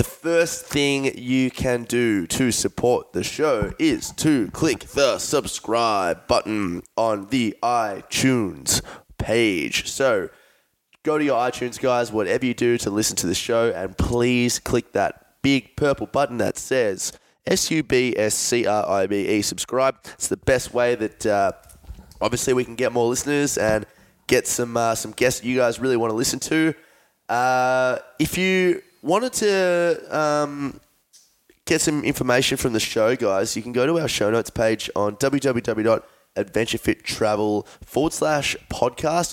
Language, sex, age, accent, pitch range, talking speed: English, male, 20-39, Australian, 110-145 Hz, 145 wpm